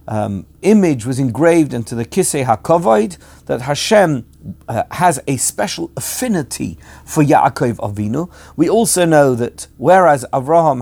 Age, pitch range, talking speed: 50-69, 115-160 Hz, 135 wpm